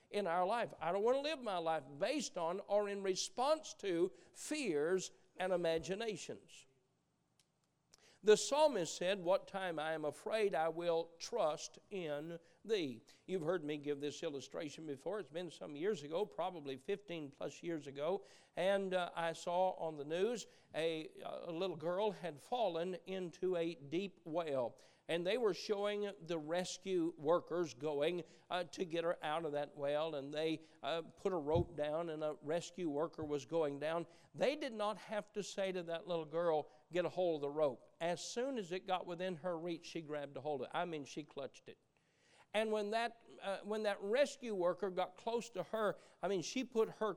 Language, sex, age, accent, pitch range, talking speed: English, male, 50-69, American, 160-205 Hz, 190 wpm